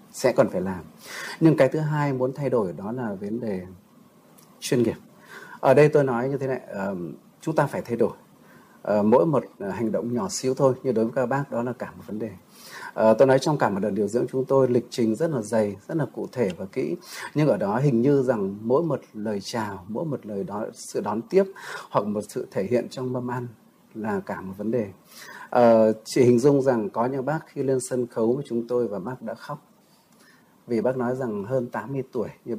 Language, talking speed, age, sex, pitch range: Vietnamese, 230 wpm, 30-49, male, 110-135 Hz